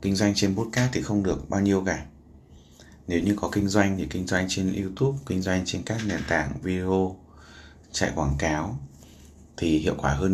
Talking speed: 195 wpm